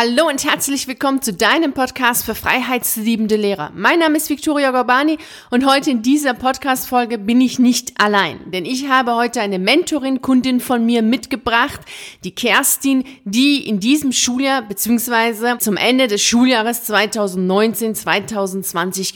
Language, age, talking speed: German, 30-49, 140 wpm